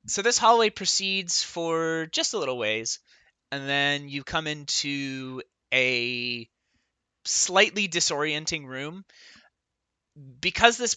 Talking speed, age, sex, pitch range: 110 wpm, 20-39, male, 130-170 Hz